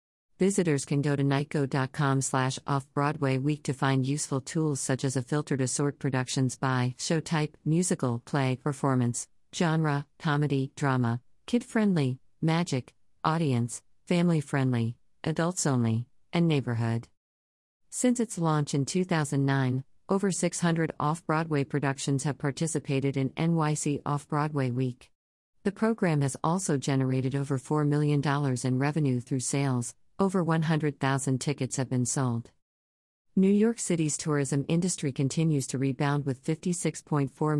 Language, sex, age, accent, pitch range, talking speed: English, female, 50-69, American, 130-155 Hz, 125 wpm